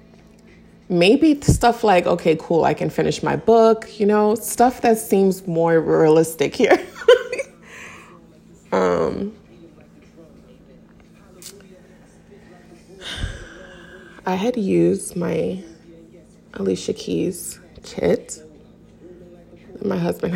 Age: 20-39